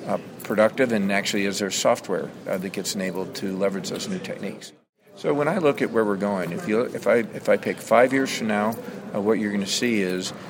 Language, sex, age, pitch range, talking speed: English, male, 50-69, 100-110 Hz, 240 wpm